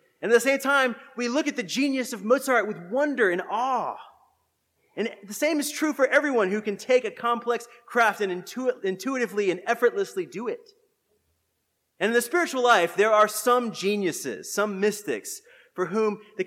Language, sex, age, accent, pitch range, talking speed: English, male, 30-49, American, 180-250 Hz, 180 wpm